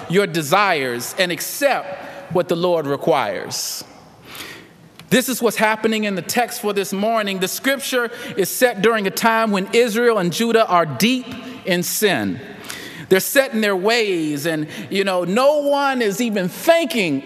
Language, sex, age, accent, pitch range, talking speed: English, male, 40-59, American, 190-270 Hz, 160 wpm